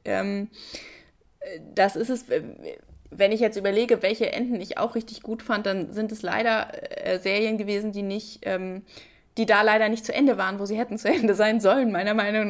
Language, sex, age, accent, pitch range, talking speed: German, female, 20-39, German, 205-255 Hz, 180 wpm